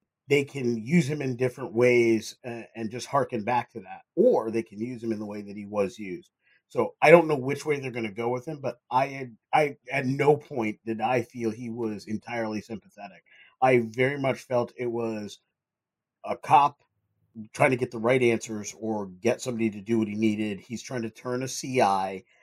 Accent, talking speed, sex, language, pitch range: American, 210 wpm, male, English, 110-130 Hz